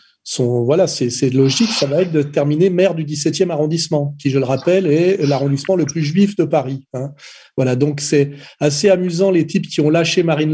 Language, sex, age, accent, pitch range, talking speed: French, male, 40-59, French, 140-165 Hz, 210 wpm